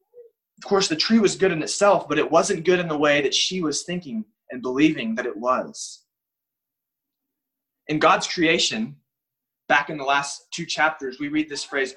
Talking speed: 185 wpm